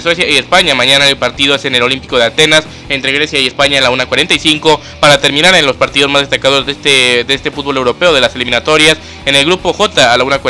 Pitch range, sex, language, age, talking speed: 135-155 Hz, male, Spanish, 20-39, 235 wpm